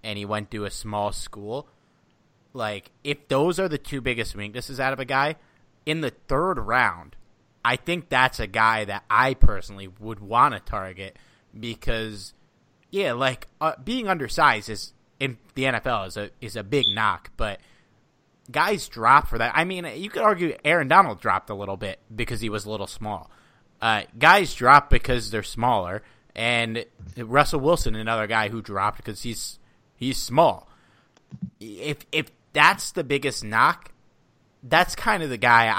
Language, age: English, 30-49